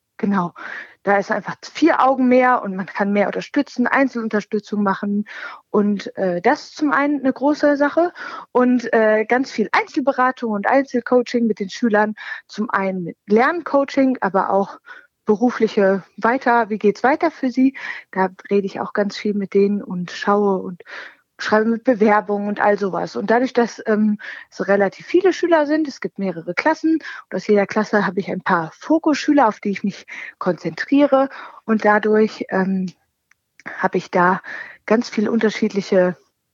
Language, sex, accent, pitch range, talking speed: German, female, German, 200-260 Hz, 165 wpm